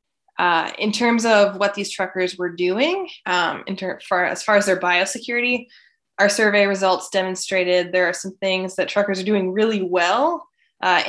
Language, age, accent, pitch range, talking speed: English, 20-39, American, 185-215 Hz, 180 wpm